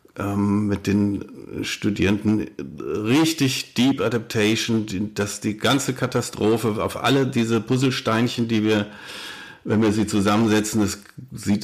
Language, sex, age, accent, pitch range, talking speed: German, male, 50-69, German, 100-125 Hz, 115 wpm